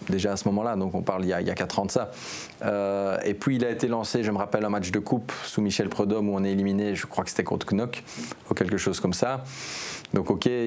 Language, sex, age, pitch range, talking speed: French, male, 20-39, 95-110 Hz, 290 wpm